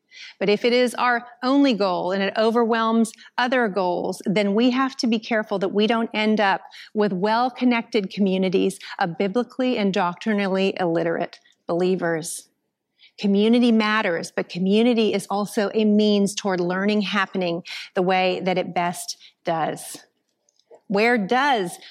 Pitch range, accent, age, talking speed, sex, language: 195-235 Hz, American, 40-59, 140 wpm, female, English